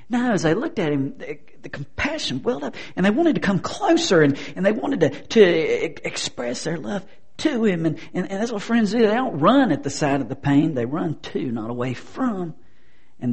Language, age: English, 50-69